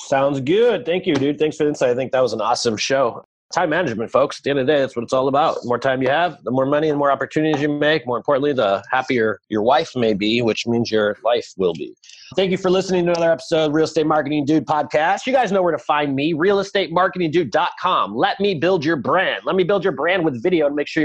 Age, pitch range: 30-49, 135-185 Hz